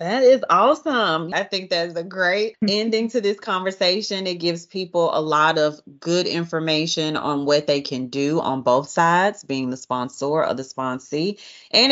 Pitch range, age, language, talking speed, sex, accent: 150-185 Hz, 30-49, English, 180 wpm, female, American